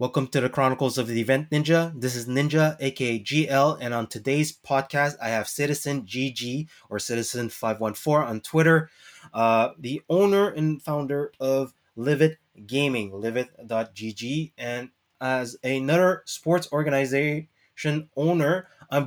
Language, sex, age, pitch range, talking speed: English, male, 20-39, 120-150 Hz, 130 wpm